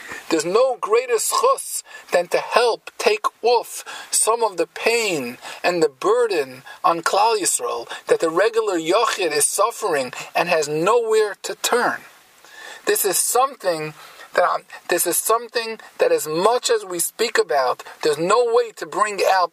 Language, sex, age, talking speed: English, male, 40-59, 155 wpm